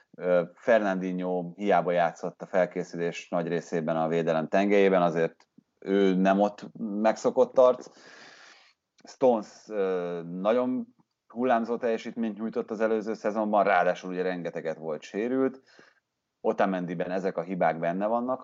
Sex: male